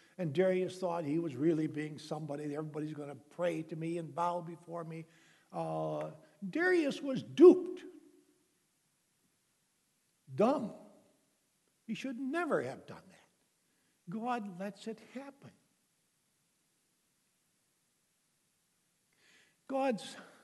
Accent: American